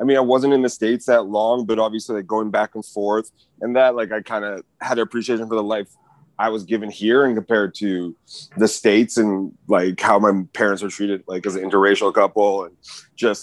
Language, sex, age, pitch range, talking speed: English, male, 30-49, 100-125 Hz, 230 wpm